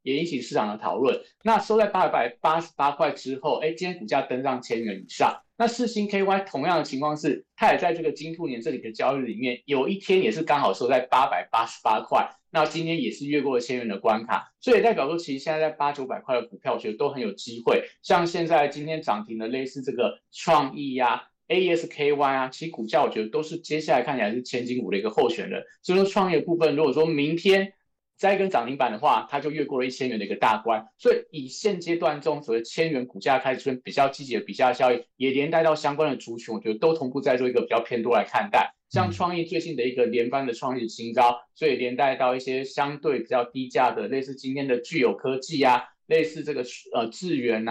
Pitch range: 130-170 Hz